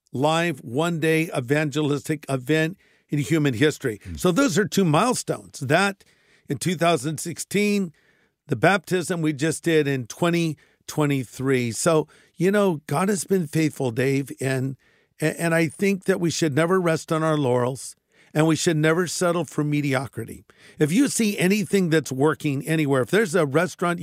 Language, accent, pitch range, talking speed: English, American, 150-175 Hz, 150 wpm